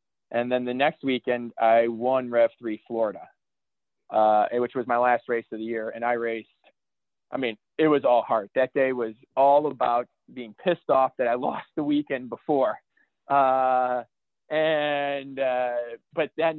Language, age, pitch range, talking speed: English, 20-39, 120-165 Hz, 165 wpm